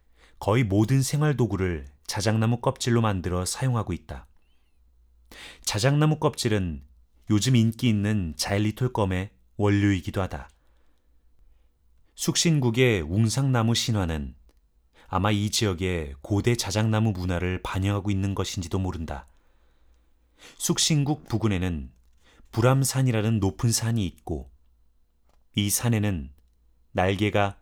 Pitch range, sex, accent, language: 70-110 Hz, male, native, Korean